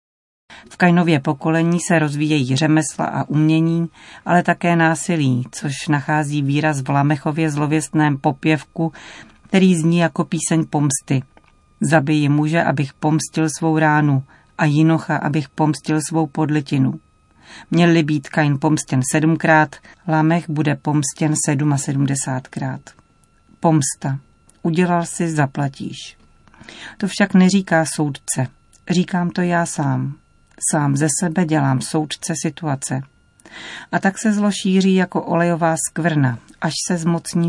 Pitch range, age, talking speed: 145-170 Hz, 40-59, 120 wpm